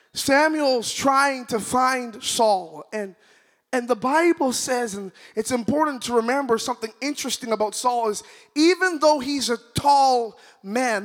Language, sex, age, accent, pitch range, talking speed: English, male, 20-39, American, 225-280 Hz, 140 wpm